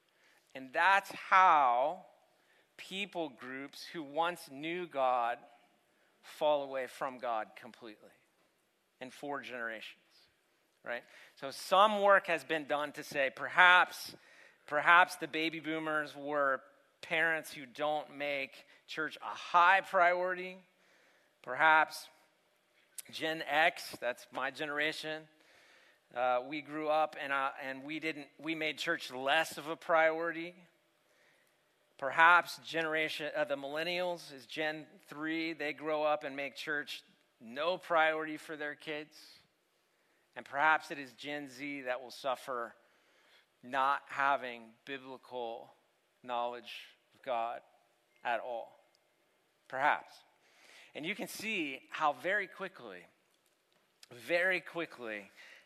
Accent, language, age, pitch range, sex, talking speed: American, English, 40-59, 140-165 Hz, male, 115 wpm